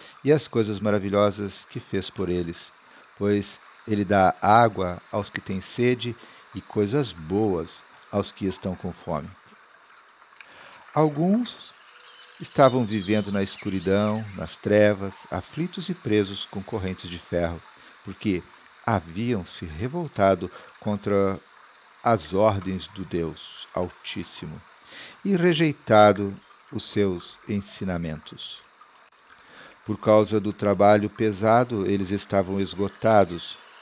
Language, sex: Portuguese, male